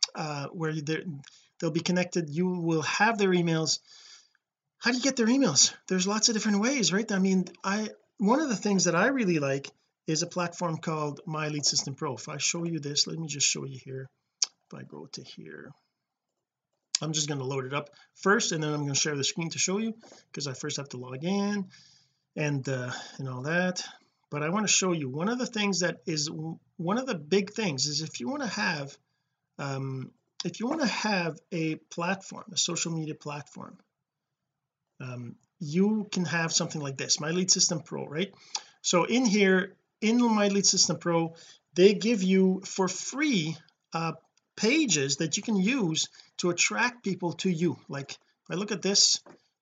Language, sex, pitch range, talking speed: English, male, 155-205 Hz, 200 wpm